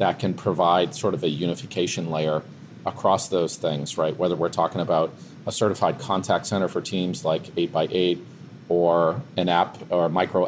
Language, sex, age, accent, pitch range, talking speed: English, male, 40-59, American, 85-100 Hz, 165 wpm